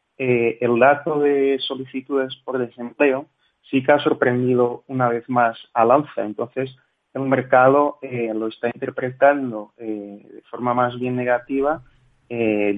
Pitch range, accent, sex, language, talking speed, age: 115-130 Hz, Spanish, male, Spanish, 140 wpm, 30-49